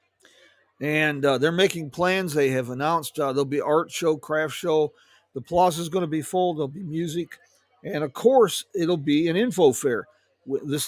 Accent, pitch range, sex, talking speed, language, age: American, 140-180 Hz, male, 190 wpm, English, 50-69